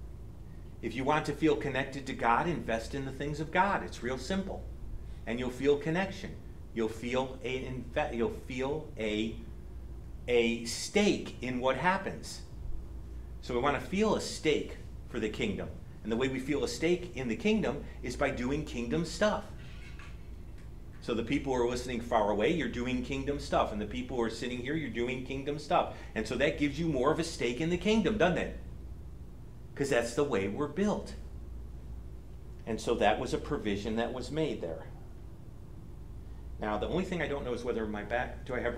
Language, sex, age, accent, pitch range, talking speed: English, male, 40-59, American, 110-150 Hz, 185 wpm